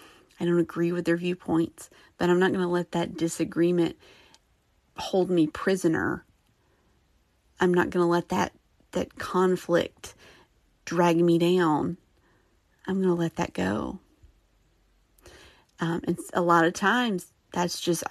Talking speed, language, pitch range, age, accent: 145 wpm, English, 170-210 Hz, 30-49, American